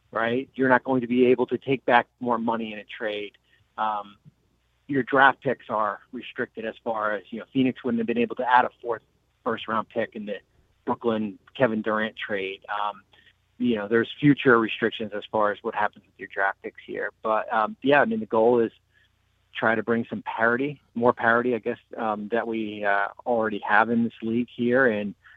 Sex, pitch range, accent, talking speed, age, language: male, 110-125 Hz, American, 210 wpm, 30-49, English